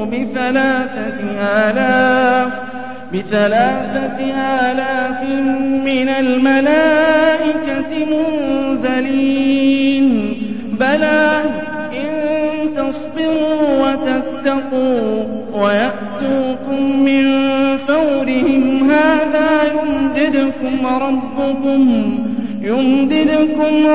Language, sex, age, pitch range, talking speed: Arabic, male, 40-59, 255-305 Hz, 40 wpm